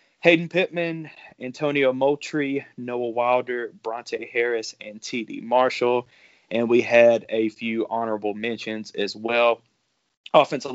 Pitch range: 115-145 Hz